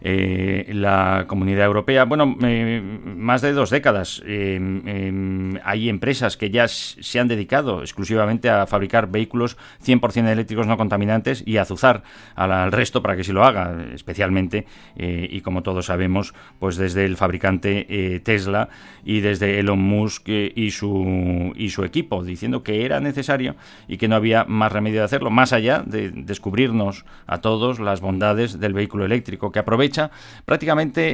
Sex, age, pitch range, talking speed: male, 40-59, 95-120 Hz, 170 wpm